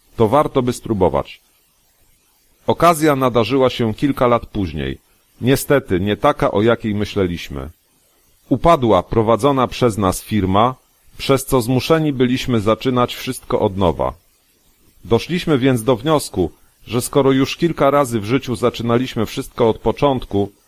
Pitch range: 105-135 Hz